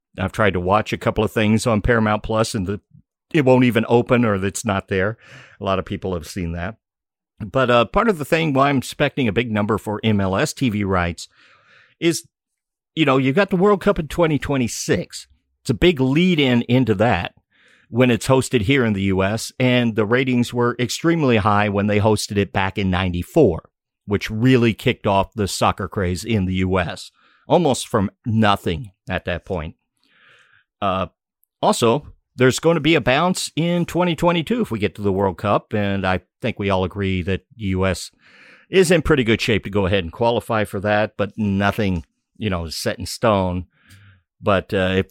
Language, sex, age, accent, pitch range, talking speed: English, male, 50-69, American, 95-125 Hz, 190 wpm